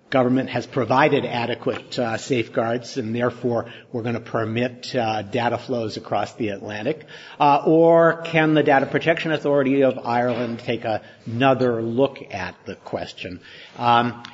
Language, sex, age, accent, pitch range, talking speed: English, male, 50-69, American, 125-155 Hz, 145 wpm